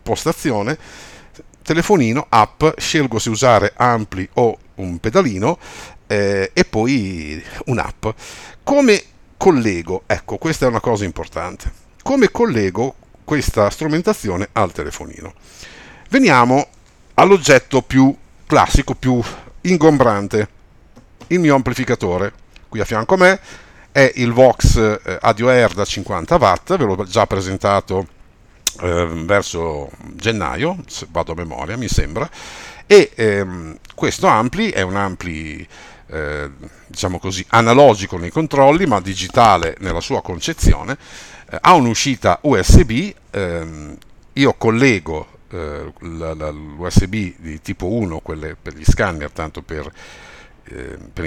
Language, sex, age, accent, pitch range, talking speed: Italian, male, 50-69, native, 90-130 Hz, 120 wpm